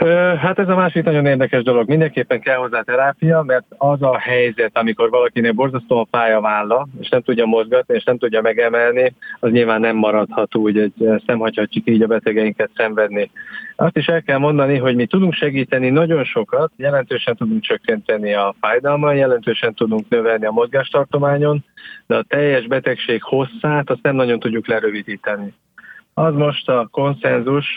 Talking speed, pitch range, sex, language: 160 wpm, 115-150 Hz, male, English